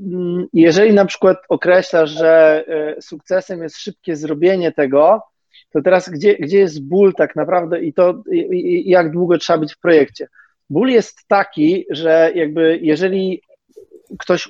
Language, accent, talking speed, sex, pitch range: Polish, native, 145 wpm, male, 170-200 Hz